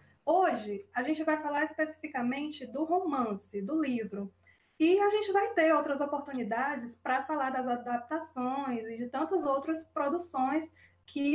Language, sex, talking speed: Portuguese, female, 145 wpm